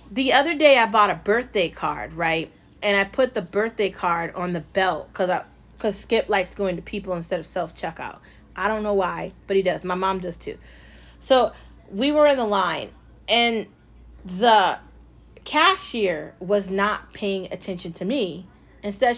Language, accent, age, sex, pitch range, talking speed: English, American, 30-49, female, 185-255 Hz, 170 wpm